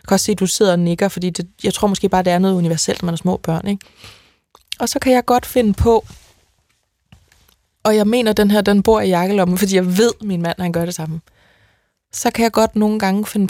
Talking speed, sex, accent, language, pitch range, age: 260 wpm, female, native, Danish, 180-225 Hz, 20-39